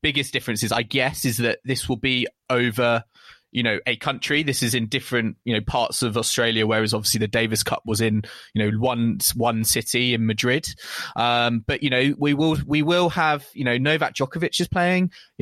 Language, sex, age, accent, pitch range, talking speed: English, male, 20-39, British, 120-165 Hz, 205 wpm